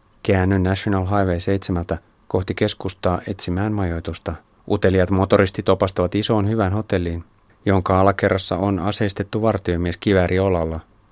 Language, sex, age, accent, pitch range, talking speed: Finnish, male, 30-49, native, 90-105 Hz, 110 wpm